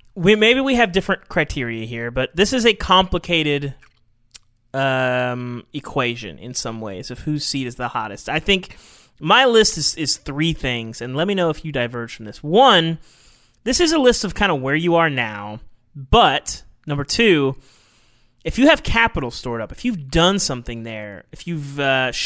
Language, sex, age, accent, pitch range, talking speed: English, male, 30-49, American, 120-175 Hz, 185 wpm